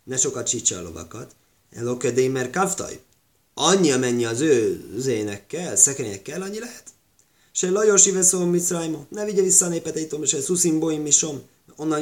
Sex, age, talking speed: male, 20-39, 150 wpm